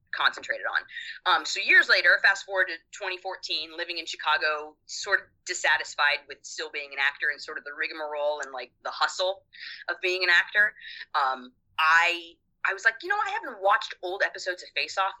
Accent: American